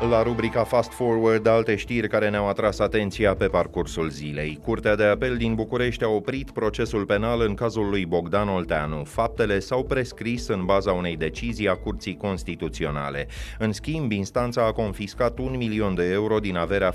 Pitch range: 90-115 Hz